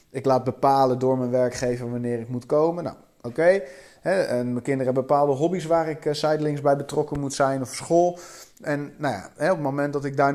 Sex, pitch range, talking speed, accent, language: male, 130-160 Hz, 210 wpm, Dutch, Dutch